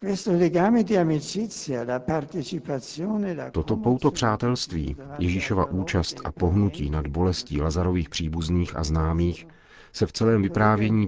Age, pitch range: 50-69, 80-100 Hz